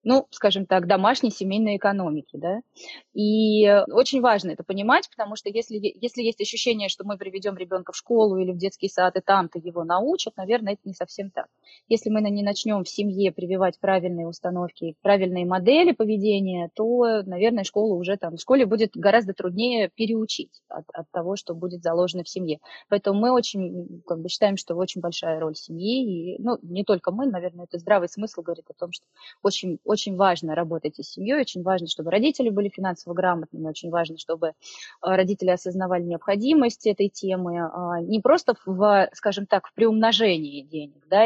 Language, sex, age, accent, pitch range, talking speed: Russian, female, 20-39, native, 175-220 Hz, 175 wpm